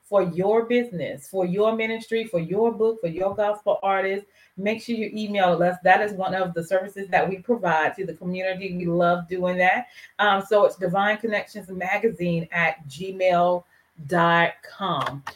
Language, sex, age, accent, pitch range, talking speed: English, female, 30-49, American, 175-210 Hz, 165 wpm